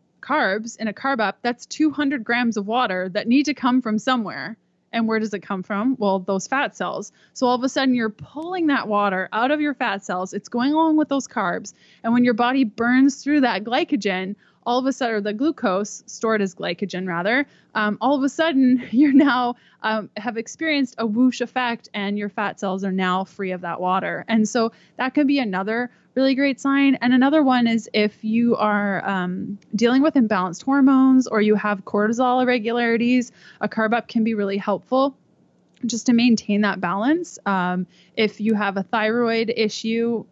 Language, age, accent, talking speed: English, 20-39, American, 195 wpm